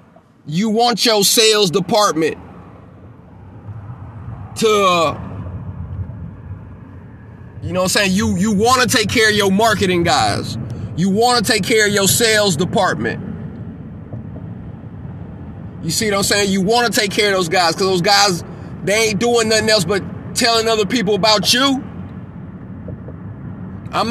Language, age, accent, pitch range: English, 30-49, American, 170-215 Hz